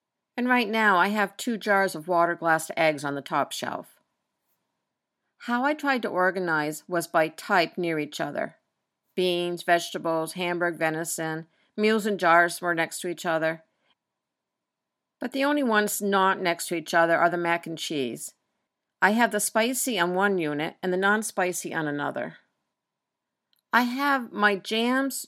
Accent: American